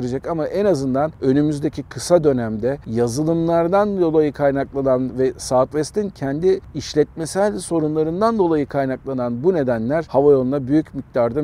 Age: 50-69